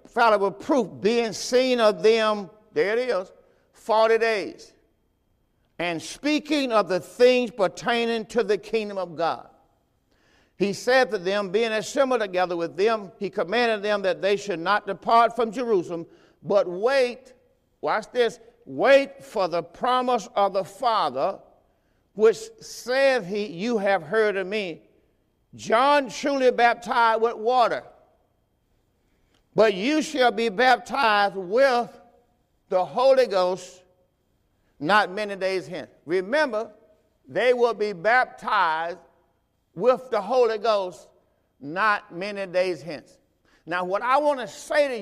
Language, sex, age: English, male, 50-69